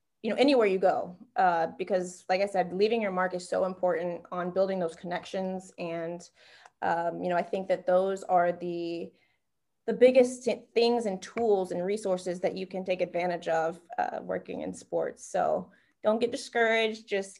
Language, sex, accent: English, female, American